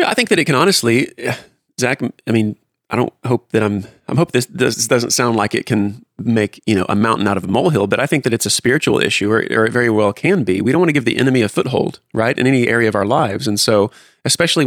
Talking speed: 270 wpm